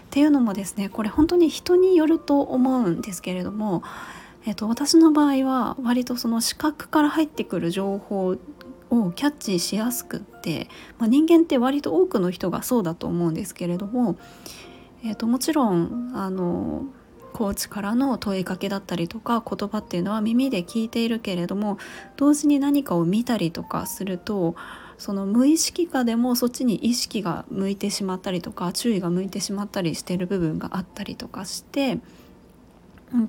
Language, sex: Japanese, female